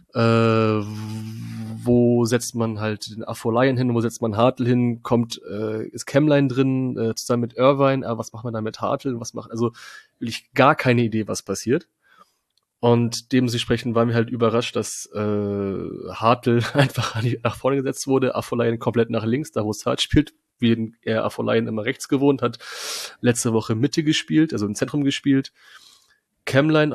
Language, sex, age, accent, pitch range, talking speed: German, male, 30-49, German, 115-135 Hz, 175 wpm